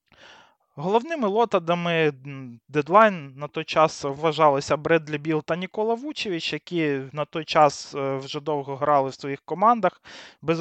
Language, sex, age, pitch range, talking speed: Russian, male, 20-39, 135-170 Hz, 130 wpm